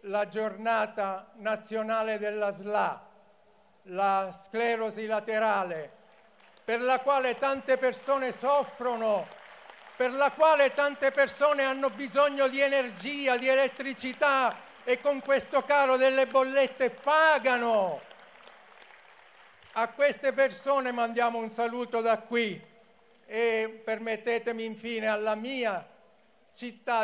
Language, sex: Italian, male